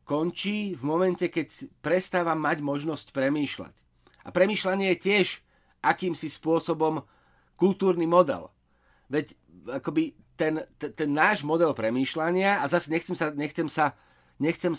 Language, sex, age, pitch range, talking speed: Slovak, male, 30-49, 150-185 Hz, 125 wpm